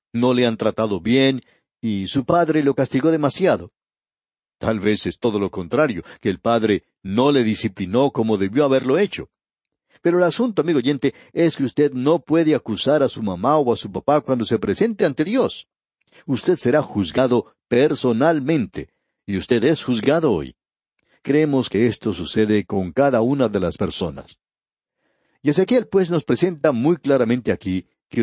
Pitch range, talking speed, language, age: 105-145 Hz, 165 wpm, Spanish, 60-79